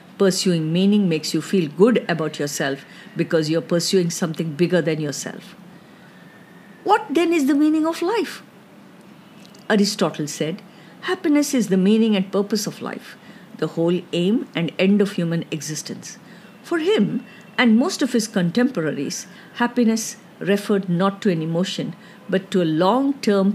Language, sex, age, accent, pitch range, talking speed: English, female, 50-69, Indian, 170-210 Hz, 150 wpm